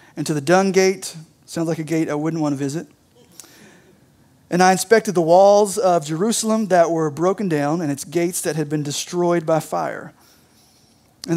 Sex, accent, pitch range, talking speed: male, American, 150-190 Hz, 185 wpm